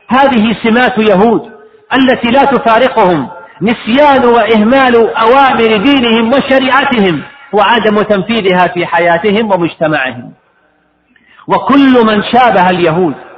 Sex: male